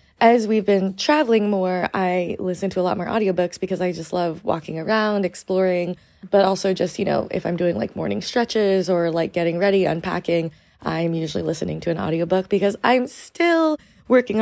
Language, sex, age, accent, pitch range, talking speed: English, female, 20-39, American, 175-210 Hz, 185 wpm